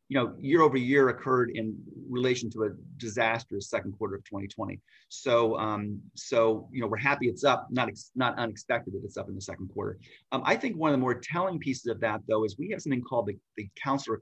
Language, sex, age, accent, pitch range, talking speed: English, male, 30-49, American, 110-135 Hz, 230 wpm